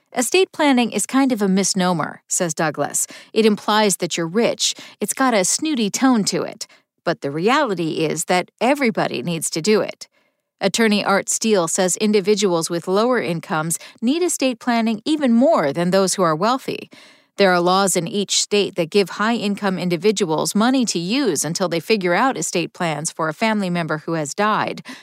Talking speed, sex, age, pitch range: 180 wpm, female, 40-59, 180-240 Hz